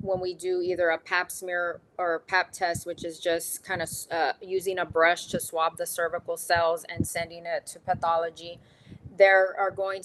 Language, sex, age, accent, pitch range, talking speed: English, female, 20-39, American, 170-200 Hz, 195 wpm